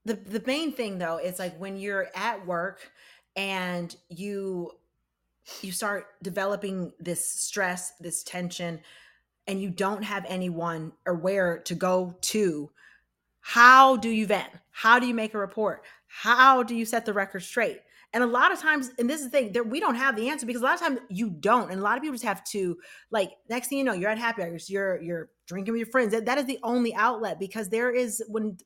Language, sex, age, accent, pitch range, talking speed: English, female, 30-49, American, 190-250 Hz, 210 wpm